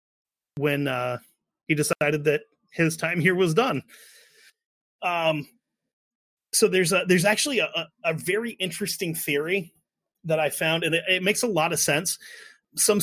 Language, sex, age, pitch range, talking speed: English, male, 30-49, 150-185 Hz, 150 wpm